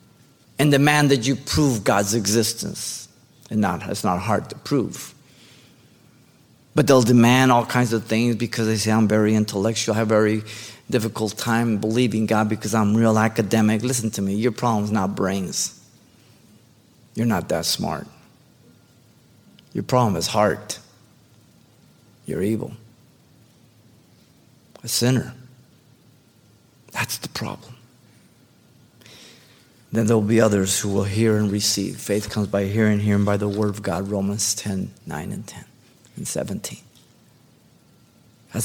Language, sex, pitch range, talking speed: English, male, 105-125 Hz, 140 wpm